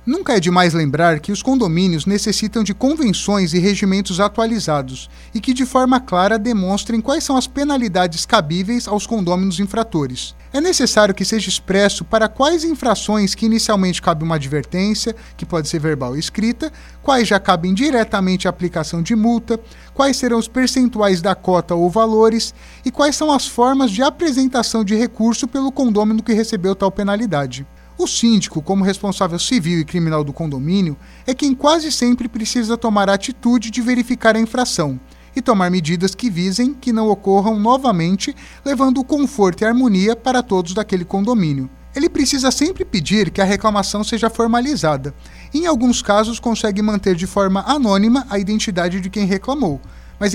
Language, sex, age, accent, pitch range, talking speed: Portuguese, male, 30-49, Brazilian, 185-250 Hz, 165 wpm